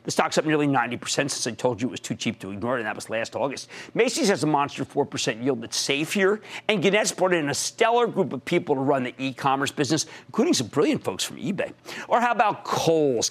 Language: English